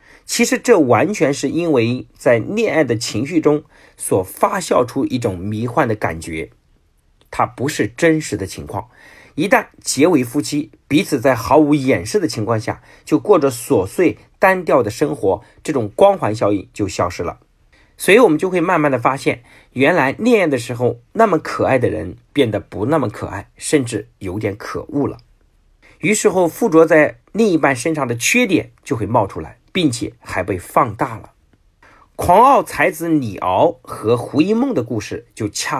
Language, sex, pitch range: Chinese, male, 105-165 Hz